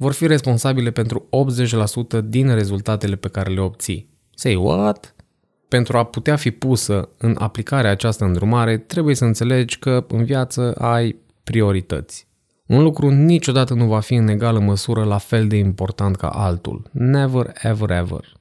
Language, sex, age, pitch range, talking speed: Romanian, male, 20-39, 100-125 Hz, 155 wpm